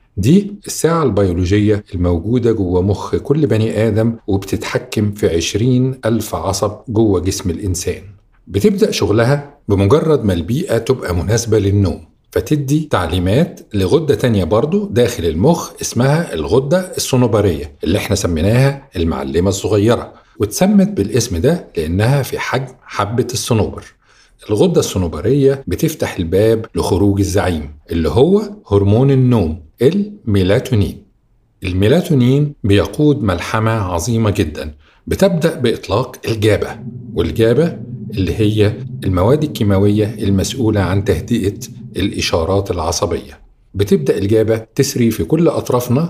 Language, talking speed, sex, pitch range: Arabic, 110 wpm, male, 100-130 Hz